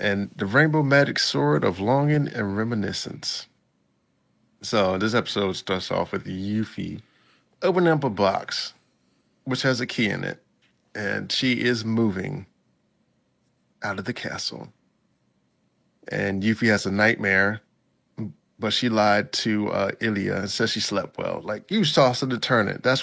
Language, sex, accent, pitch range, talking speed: English, male, American, 105-120 Hz, 150 wpm